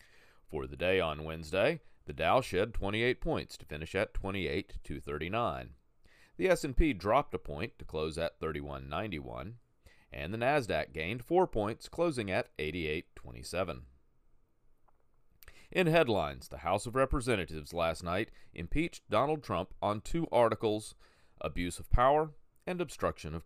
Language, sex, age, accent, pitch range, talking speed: English, male, 40-59, American, 80-115 Hz, 135 wpm